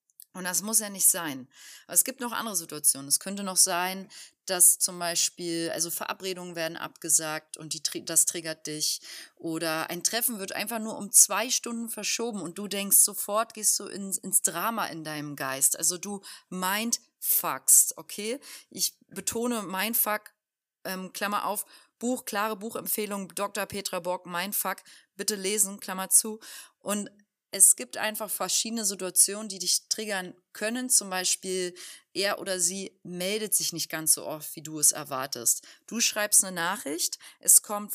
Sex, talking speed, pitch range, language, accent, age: female, 165 wpm, 180-220 Hz, German, German, 30-49